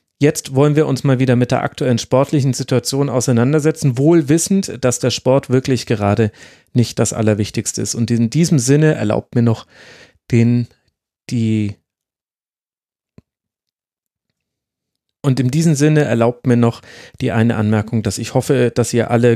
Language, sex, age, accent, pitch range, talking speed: German, male, 30-49, German, 115-145 Hz, 145 wpm